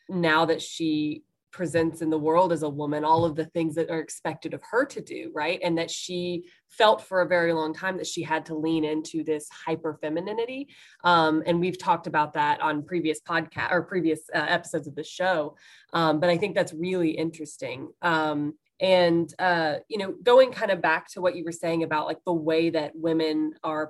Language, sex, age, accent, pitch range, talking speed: English, female, 20-39, American, 155-180 Hz, 210 wpm